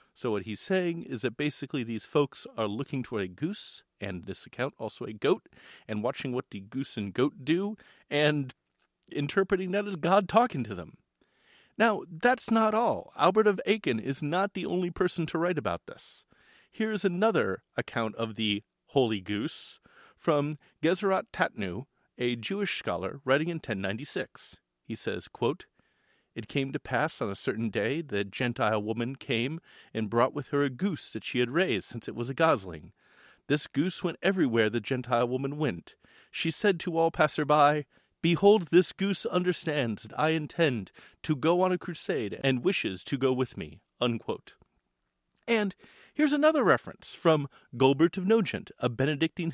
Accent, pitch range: American, 120-180 Hz